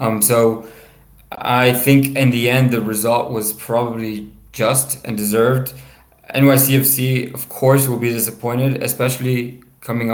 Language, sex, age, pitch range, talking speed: English, male, 20-39, 110-125 Hz, 130 wpm